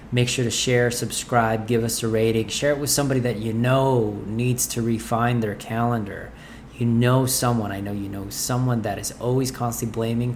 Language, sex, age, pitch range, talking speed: English, male, 20-39, 110-130 Hz, 195 wpm